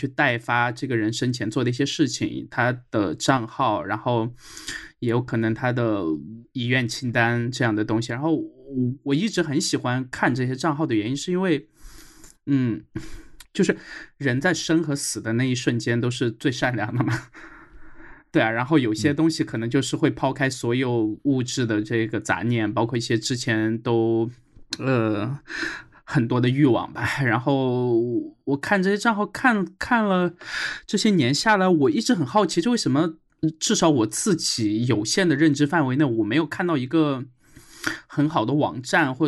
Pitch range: 120-155 Hz